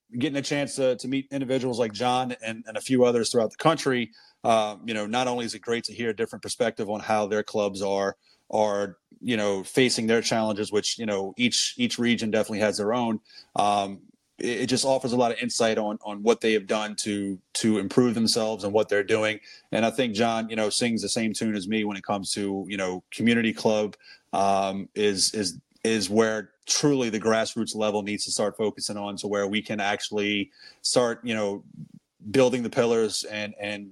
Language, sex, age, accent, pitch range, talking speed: English, male, 30-49, American, 105-120 Hz, 215 wpm